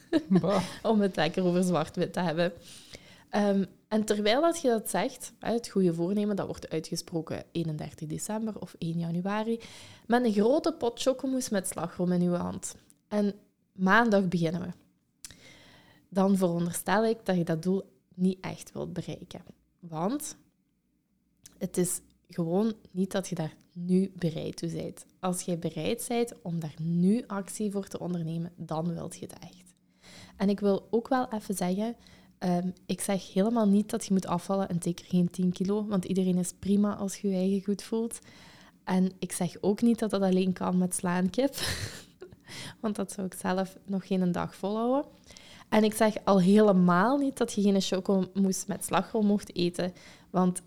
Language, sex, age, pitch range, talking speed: Dutch, female, 20-39, 175-210 Hz, 175 wpm